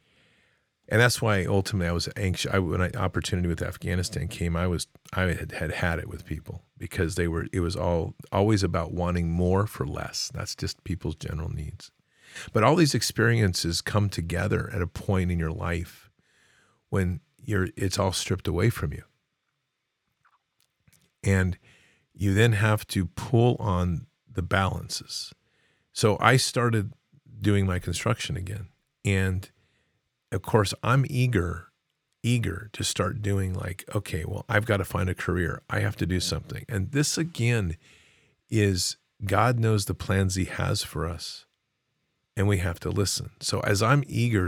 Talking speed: 160 wpm